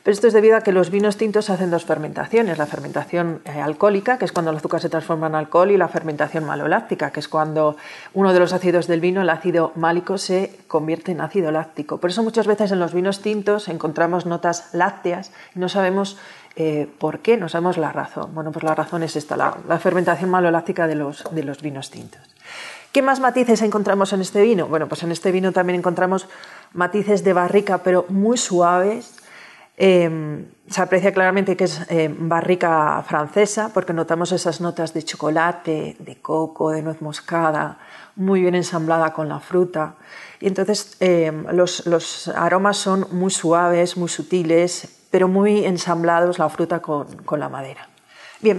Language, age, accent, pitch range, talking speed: Spanish, 40-59, Spanish, 165-195 Hz, 185 wpm